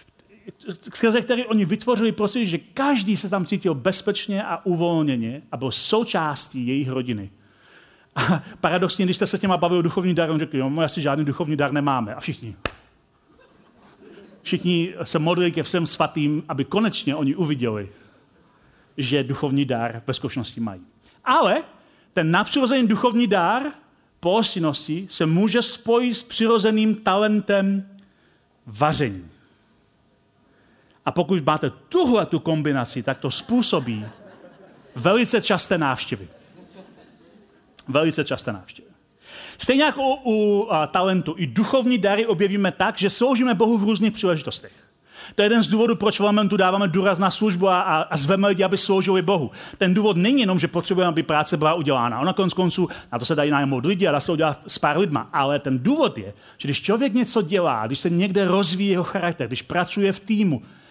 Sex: male